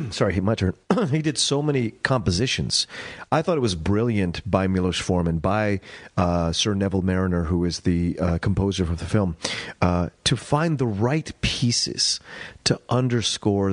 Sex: male